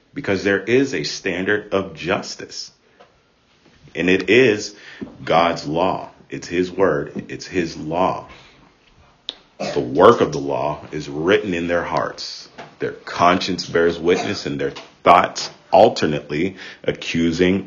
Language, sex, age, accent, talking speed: English, male, 40-59, American, 125 wpm